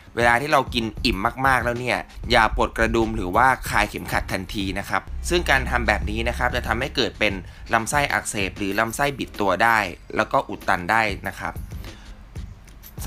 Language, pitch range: Thai, 95-125 Hz